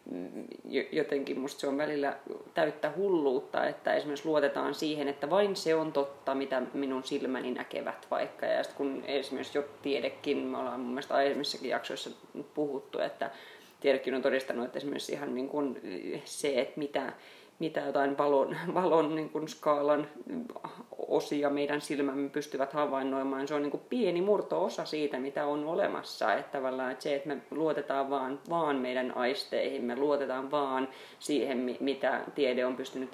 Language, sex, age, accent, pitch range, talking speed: Finnish, female, 30-49, native, 135-155 Hz, 150 wpm